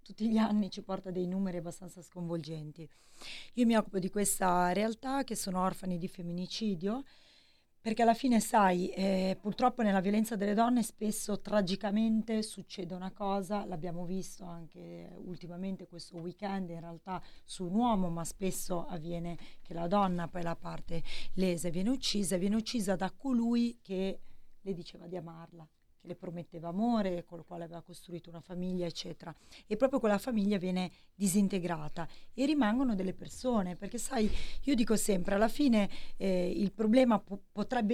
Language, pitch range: Italian, 175-215 Hz